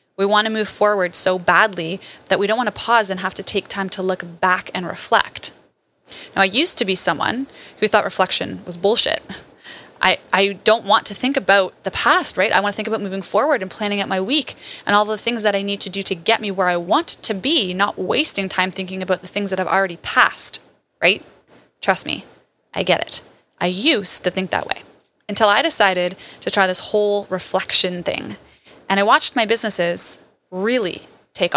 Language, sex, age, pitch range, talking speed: English, female, 20-39, 185-215 Hz, 215 wpm